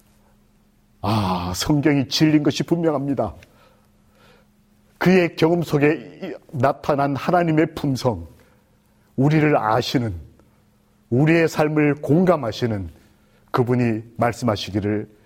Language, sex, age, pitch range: Korean, male, 40-59, 105-150 Hz